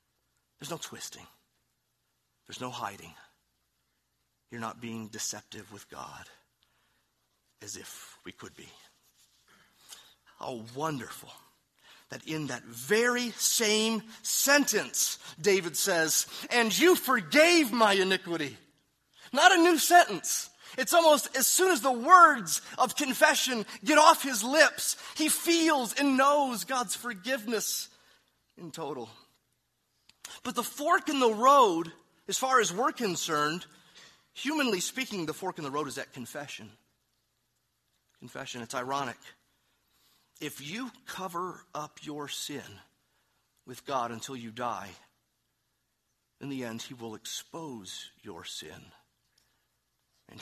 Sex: male